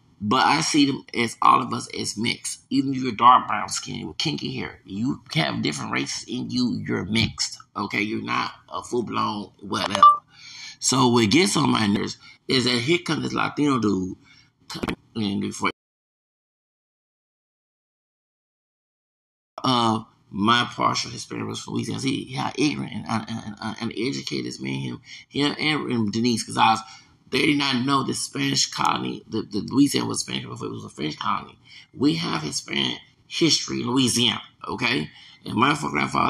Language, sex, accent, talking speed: English, male, American, 170 wpm